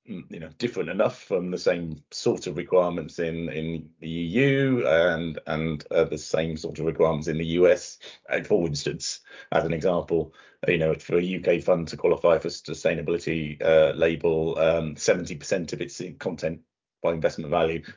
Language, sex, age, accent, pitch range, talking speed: English, male, 30-49, British, 80-95 Hz, 170 wpm